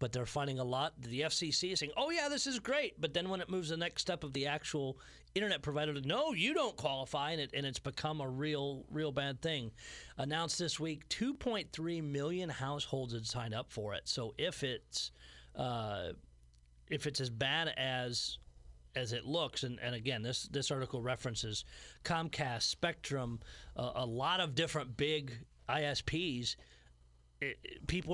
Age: 40-59